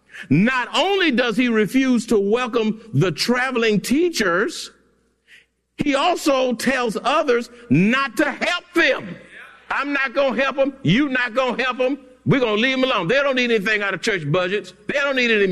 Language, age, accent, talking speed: English, 60-79, American, 185 wpm